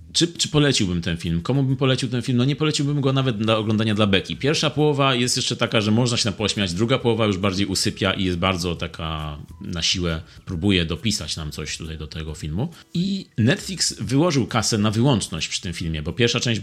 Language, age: Polish, 30-49